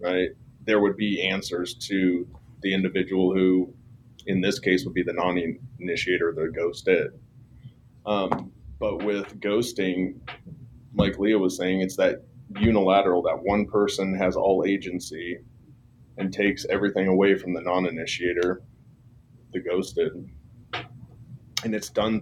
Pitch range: 95-120 Hz